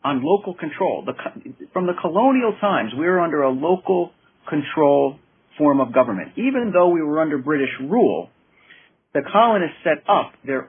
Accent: American